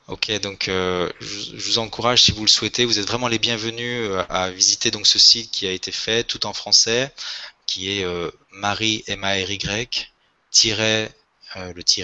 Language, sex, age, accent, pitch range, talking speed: French, male, 20-39, French, 95-115 Hz, 180 wpm